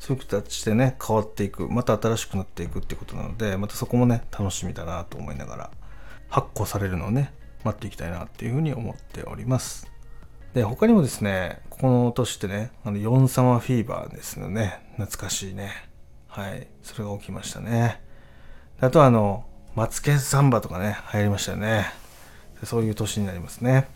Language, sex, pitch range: Japanese, male, 100-125 Hz